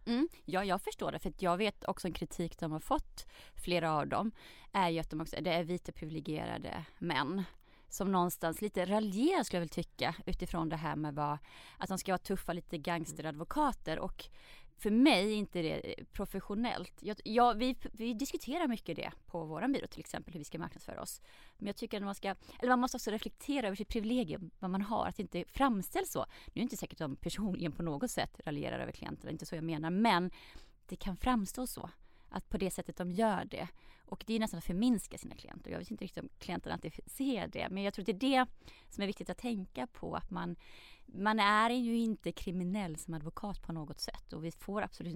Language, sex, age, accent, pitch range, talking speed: English, female, 30-49, Norwegian, 170-220 Hz, 220 wpm